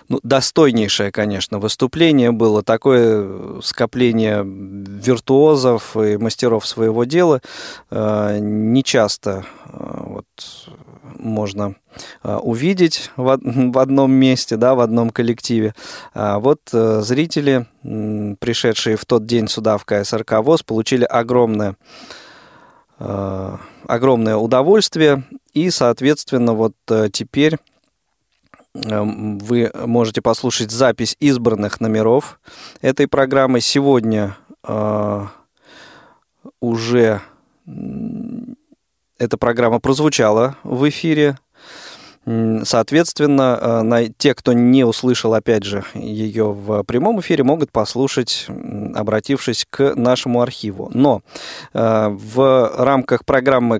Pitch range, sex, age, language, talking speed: 110-135 Hz, male, 20-39, Russian, 95 wpm